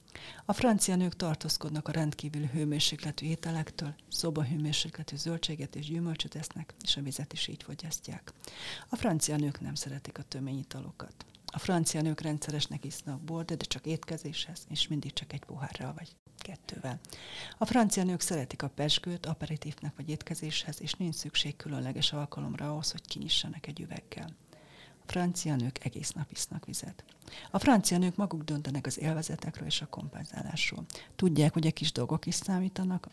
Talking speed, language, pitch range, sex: 155 wpm, Hungarian, 150-170 Hz, female